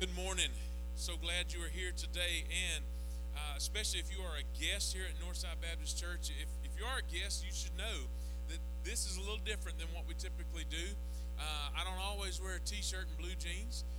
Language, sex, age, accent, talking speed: English, male, 40-59, American, 220 wpm